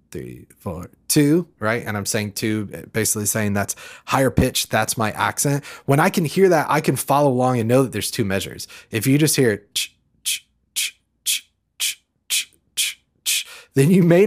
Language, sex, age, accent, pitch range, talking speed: English, male, 20-39, American, 110-140 Hz, 165 wpm